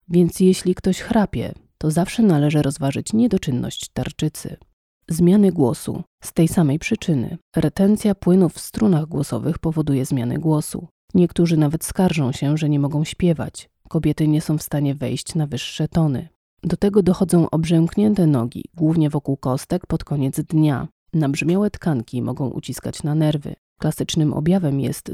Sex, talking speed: female, 145 wpm